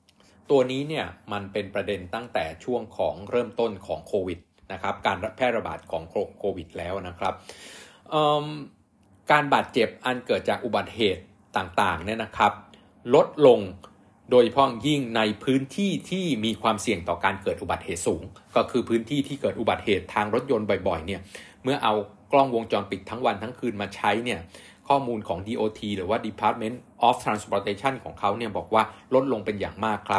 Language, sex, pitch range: Thai, male, 105-125 Hz